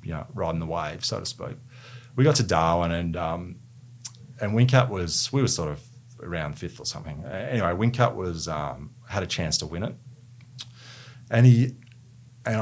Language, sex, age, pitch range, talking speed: English, male, 30-49, 95-125 Hz, 180 wpm